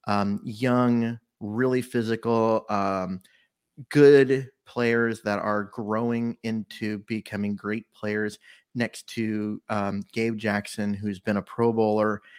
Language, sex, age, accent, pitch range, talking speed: English, male, 30-49, American, 105-125 Hz, 115 wpm